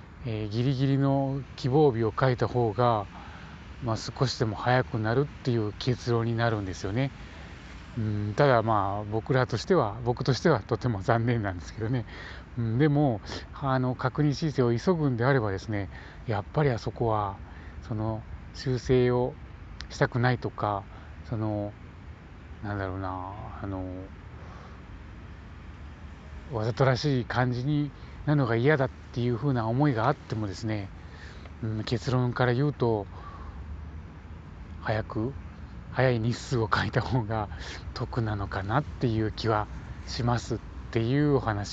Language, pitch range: Japanese, 95-130 Hz